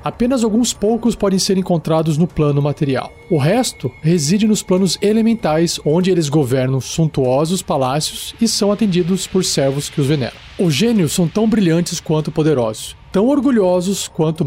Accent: Brazilian